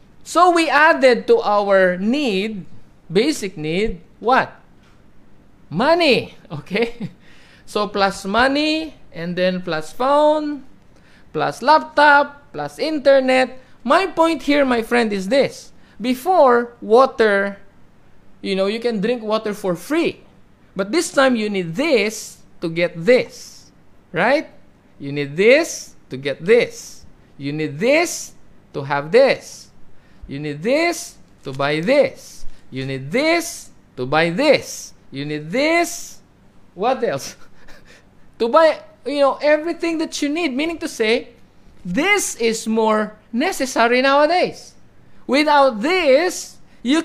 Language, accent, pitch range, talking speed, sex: English, Filipino, 195-295 Hz, 125 wpm, male